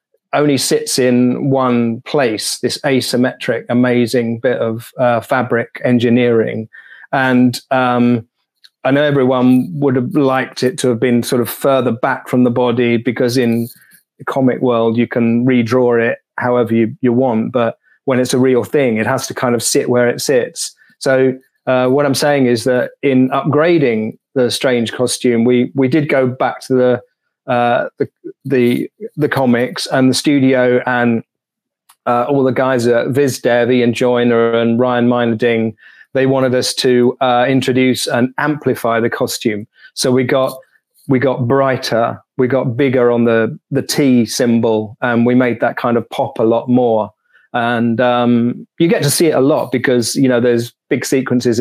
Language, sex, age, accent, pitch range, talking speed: English, male, 30-49, British, 120-130 Hz, 175 wpm